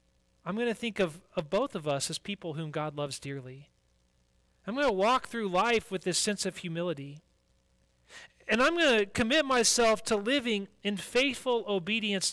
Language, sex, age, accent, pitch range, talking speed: English, male, 30-49, American, 140-210 Hz, 180 wpm